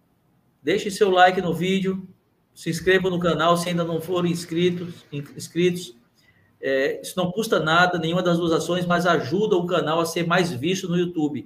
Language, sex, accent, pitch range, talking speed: Portuguese, male, Brazilian, 150-180 Hz, 170 wpm